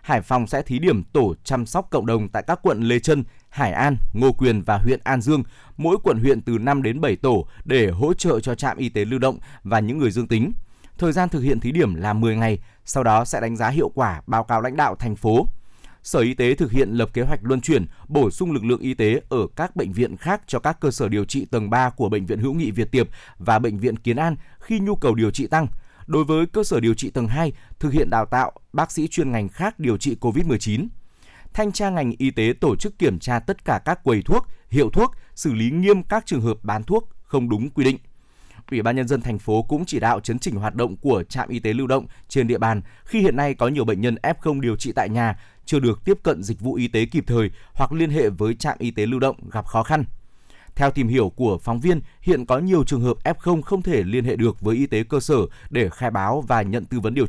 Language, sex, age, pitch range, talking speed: Vietnamese, male, 20-39, 115-140 Hz, 260 wpm